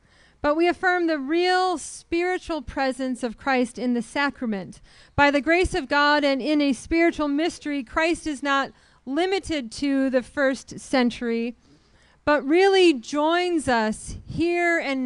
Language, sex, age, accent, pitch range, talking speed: English, female, 30-49, American, 225-295 Hz, 145 wpm